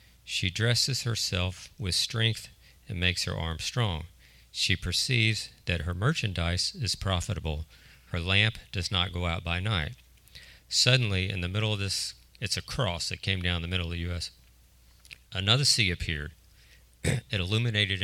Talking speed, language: 155 wpm, English